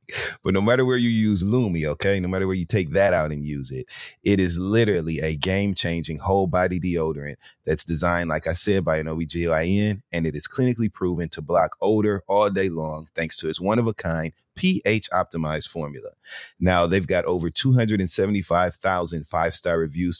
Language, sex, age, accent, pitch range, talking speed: English, male, 30-49, American, 80-105 Hz, 190 wpm